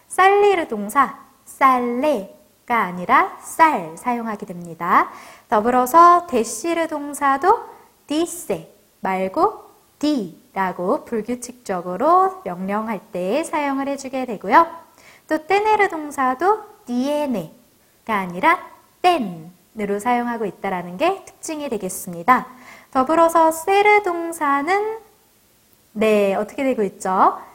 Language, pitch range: English, 210-340 Hz